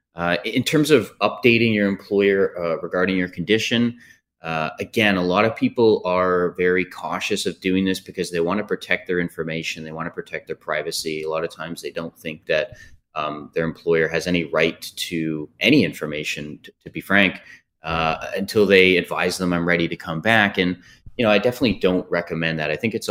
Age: 30-49